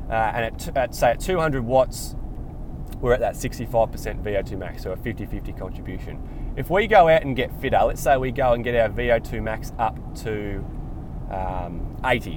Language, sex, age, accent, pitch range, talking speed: English, male, 20-39, Australian, 110-135 Hz, 185 wpm